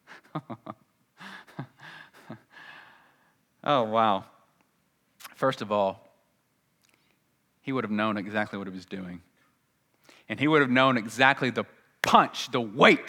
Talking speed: 110 wpm